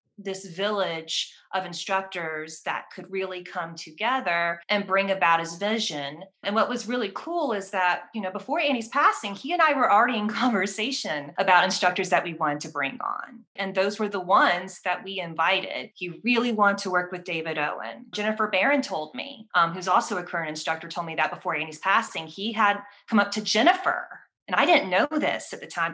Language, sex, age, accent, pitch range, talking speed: English, female, 20-39, American, 165-200 Hz, 200 wpm